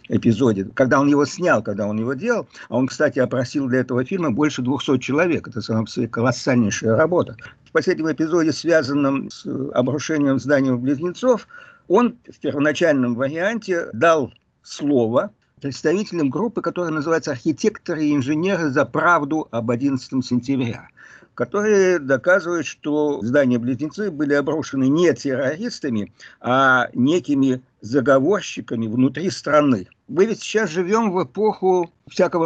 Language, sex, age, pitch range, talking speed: Russian, male, 50-69, 130-175 Hz, 130 wpm